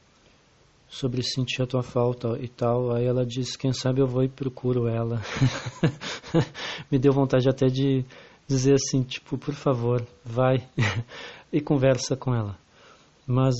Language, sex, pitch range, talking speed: Portuguese, male, 120-135 Hz, 145 wpm